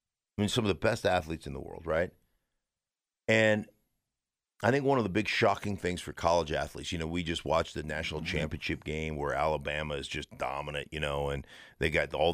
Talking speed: 210 wpm